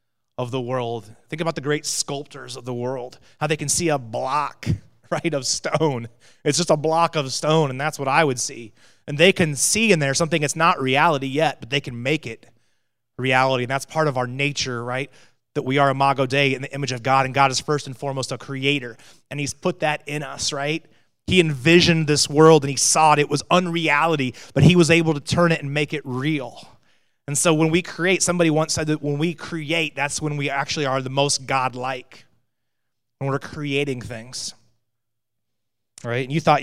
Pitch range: 115-150 Hz